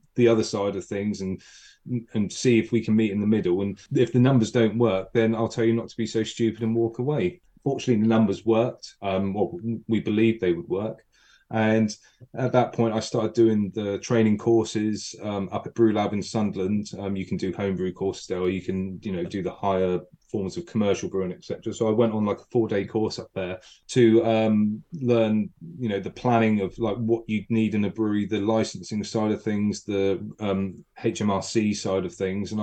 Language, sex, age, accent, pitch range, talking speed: English, male, 30-49, British, 100-115 Hz, 215 wpm